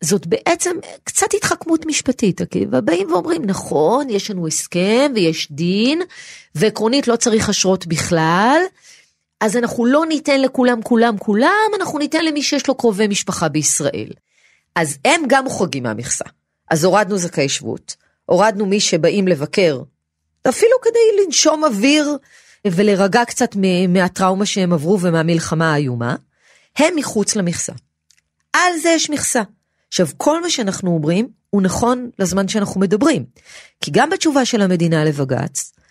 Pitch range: 170-270 Hz